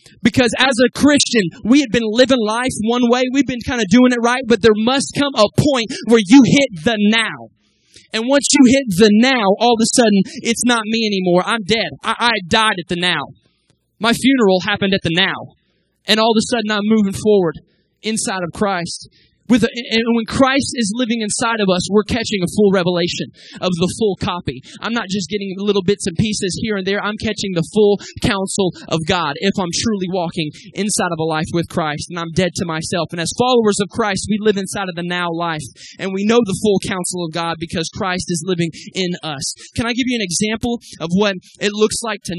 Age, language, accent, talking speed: 20-39, English, American, 220 wpm